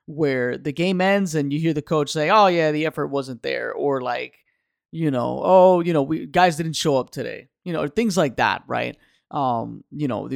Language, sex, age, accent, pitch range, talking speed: English, male, 30-49, American, 130-165 Hz, 220 wpm